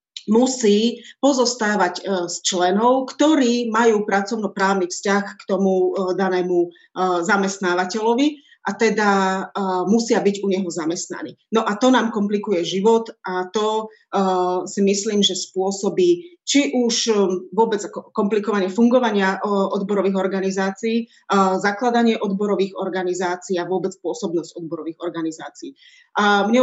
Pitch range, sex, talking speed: 185-220 Hz, female, 120 wpm